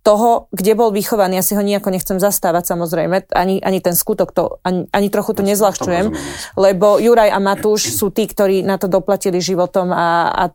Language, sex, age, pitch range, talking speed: Slovak, female, 30-49, 190-215 Hz, 190 wpm